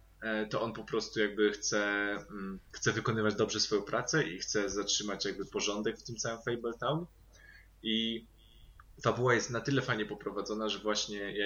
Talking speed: 160 wpm